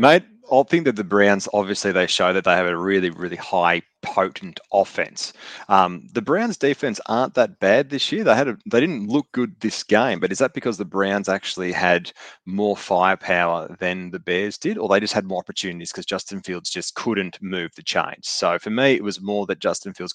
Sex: male